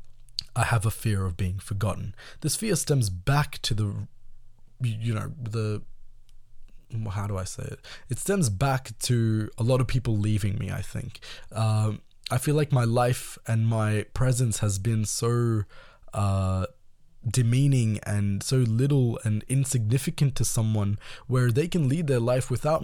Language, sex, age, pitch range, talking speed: Tamil, male, 20-39, 105-135 Hz, 165 wpm